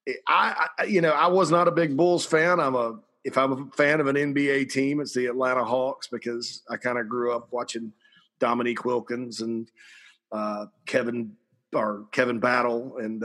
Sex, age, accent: male, 40-59, American